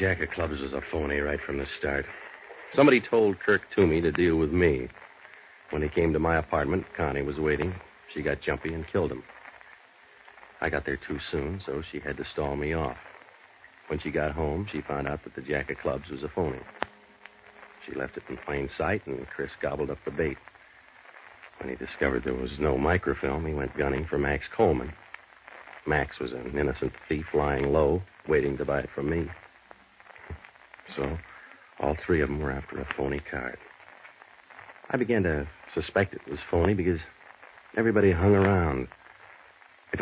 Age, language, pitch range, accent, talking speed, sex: 60-79, English, 70-85 Hz, American, 180 wpm, male